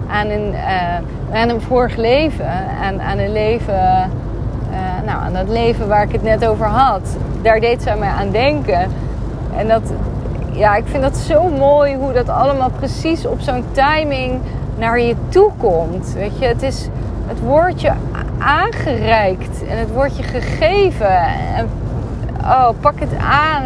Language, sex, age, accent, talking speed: Dutch, female, 30-49, Dutch, 160 wpm